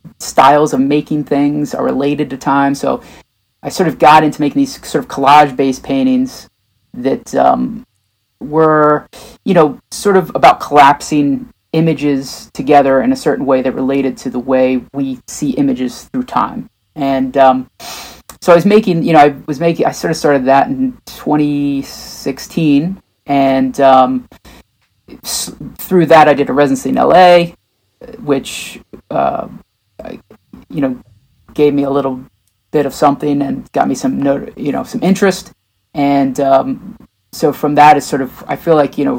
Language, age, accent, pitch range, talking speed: English, 30-49, American, 135-170 Hz, 160 wpm